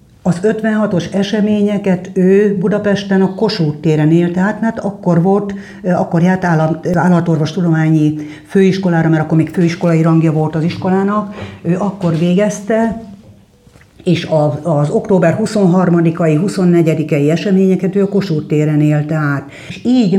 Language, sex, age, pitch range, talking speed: Hungarian, female, 60-79, 155-195 Hz, 130 wpm